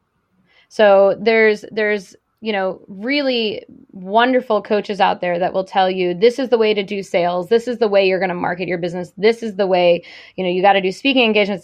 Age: 20-39